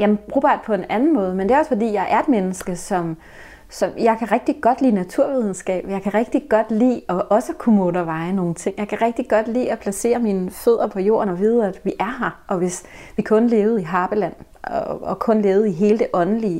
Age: 30-49